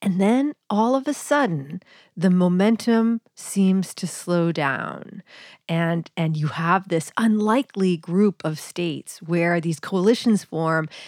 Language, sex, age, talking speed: English, female, 40-59, 135 wpm